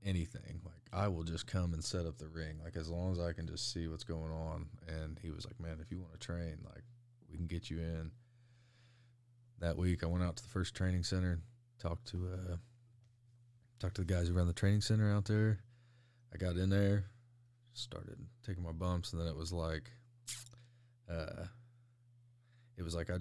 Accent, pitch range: American, 85-120 Hz